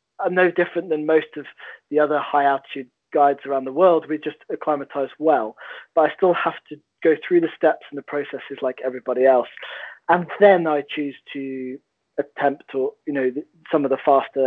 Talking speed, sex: 190 wpm, male